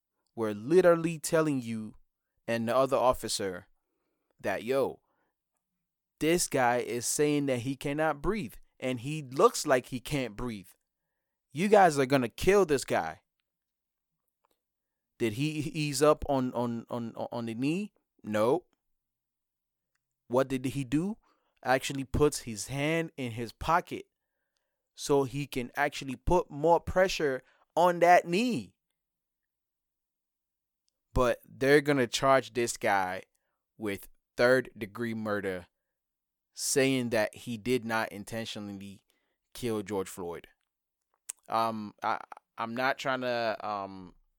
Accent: American